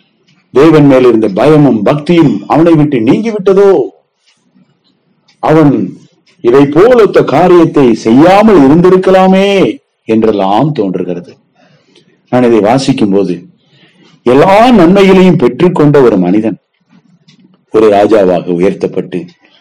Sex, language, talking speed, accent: male, English, 70 wpm, Indian